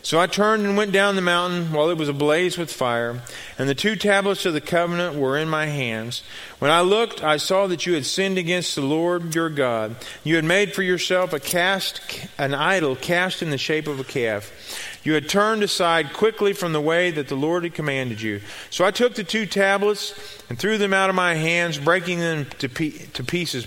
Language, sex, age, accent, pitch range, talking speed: English, male, 40-59, American, 135-180 Hz, 220 wpm